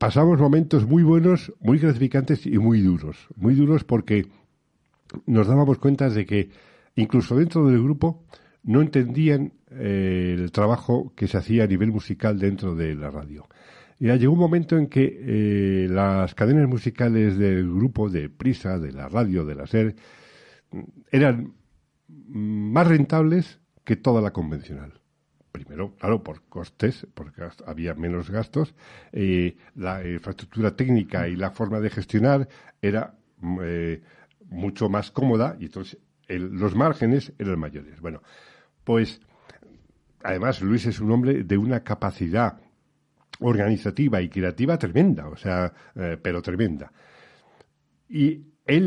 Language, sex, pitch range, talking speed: Spanish, male, 95-135 Hz, 140 wpm